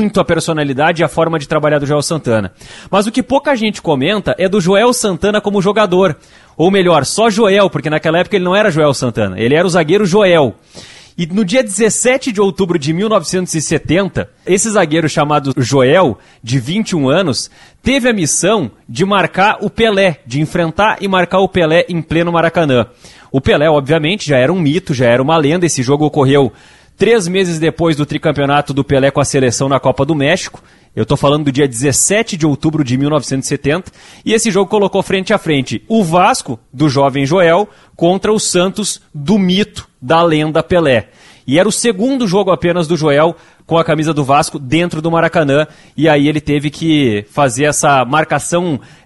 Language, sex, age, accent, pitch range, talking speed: Portuguese, male, 30-49, Brazilian, 145-190 Hz, 190 wpm